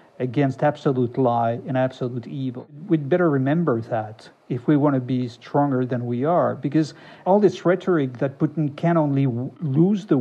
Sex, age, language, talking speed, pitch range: male, 50-69, English, 170 wpm, 130-160 Hz